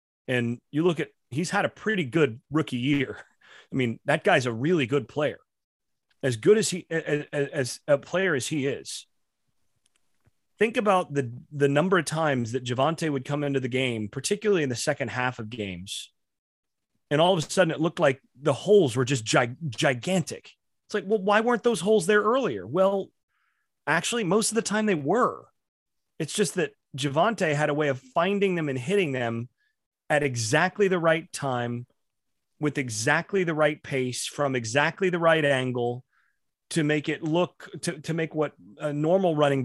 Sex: male